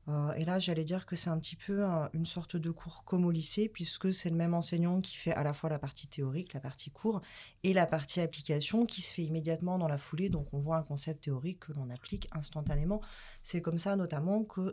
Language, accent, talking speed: French, French, 245 wpm